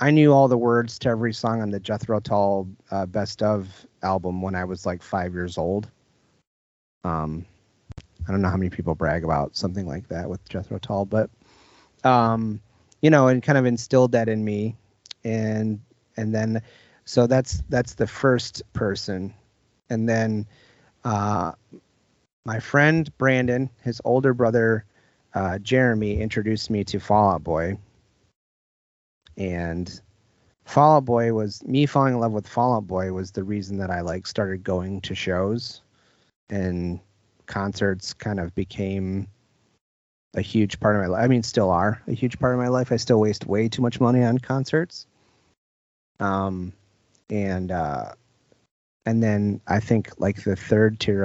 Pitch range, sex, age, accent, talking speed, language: 95-120 Hz, male, 30-49, American, 165 wpm, English